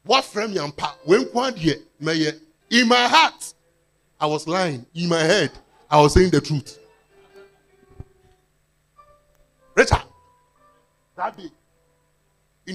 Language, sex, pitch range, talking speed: English, male, 140-220 Hz, 95 wpm